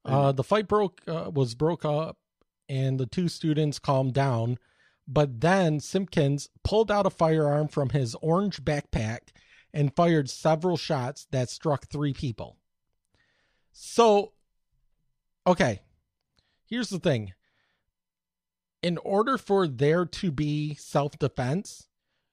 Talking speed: 120 wpm